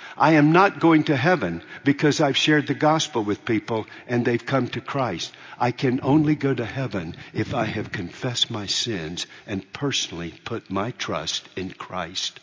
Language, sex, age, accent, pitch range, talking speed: English, male, 60-79, American, 140-215 Hz, 180 wpm